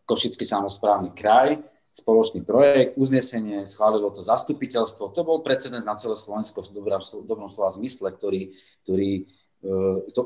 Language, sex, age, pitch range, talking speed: Slovak, male, 30-49, 100-120 Hz, 140 wpm